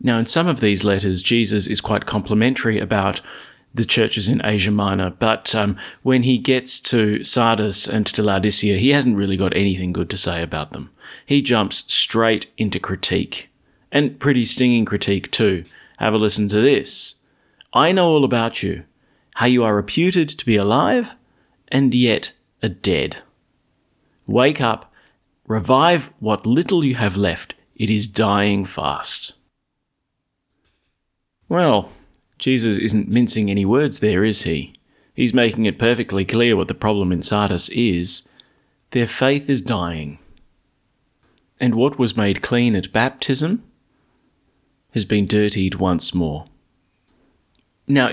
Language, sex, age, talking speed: English, male, 40-59, 145 wpm